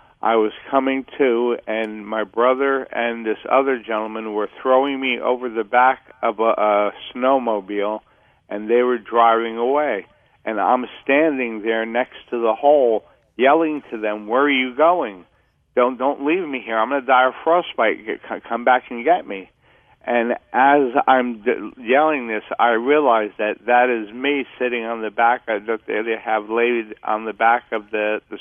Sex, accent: male, American